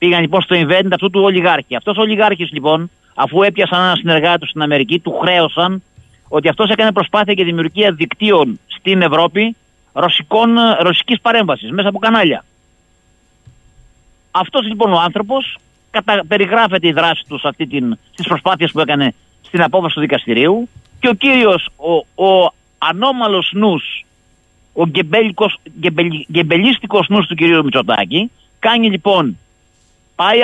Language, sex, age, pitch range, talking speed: Greek, male, 50-69, 145-215 Hz, 135 wpm